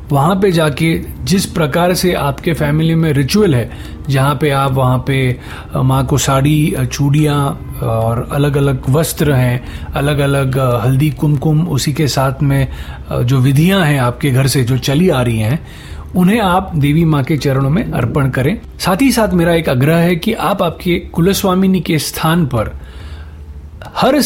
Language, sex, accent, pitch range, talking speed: Hindi, male, native, 135-175 Hz, 170 wpm